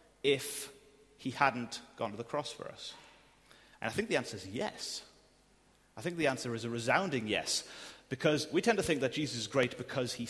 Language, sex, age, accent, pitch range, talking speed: English, male, 30-49, British, 120-155 Hz, 205 wpm